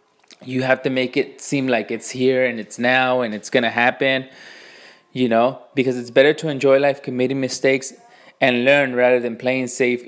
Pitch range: 120-135 Hz